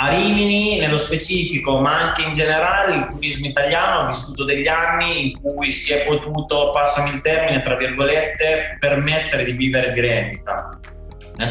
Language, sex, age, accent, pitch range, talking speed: Italian, male, 30-49, native, 125-150 Hz, 160 wpm